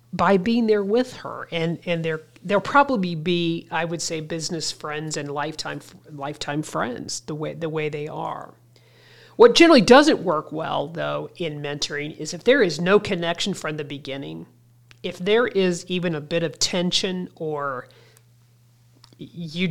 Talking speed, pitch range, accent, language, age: 160 wpm, 145-180 Hz, American, English, 40-59